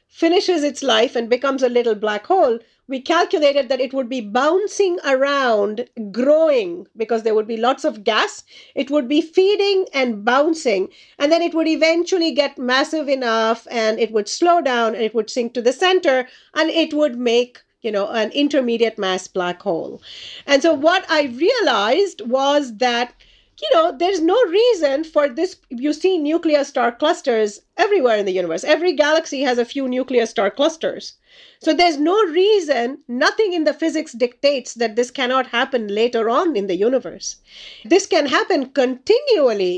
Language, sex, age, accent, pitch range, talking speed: English, female, 50-69, Indian, 240-335 Hz, 175 wpm